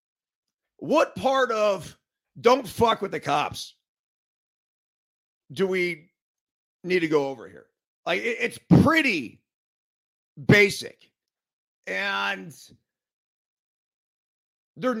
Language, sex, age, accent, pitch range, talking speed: English, male, 40-59, American, 200-285 Hz, 85 wpm